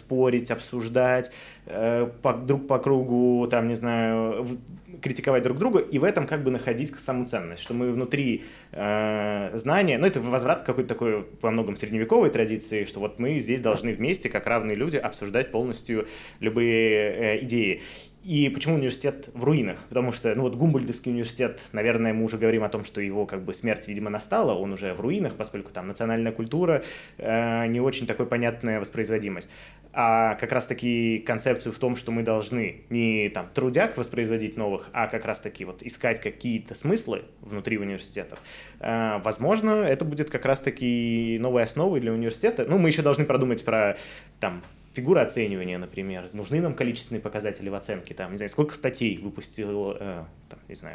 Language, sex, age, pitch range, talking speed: Russian, male, 20-39, 110-125 Hz, 170 wpm